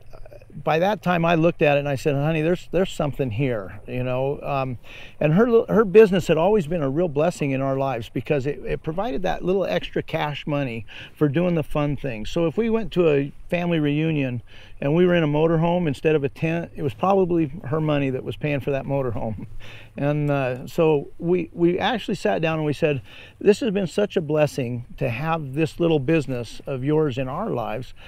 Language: English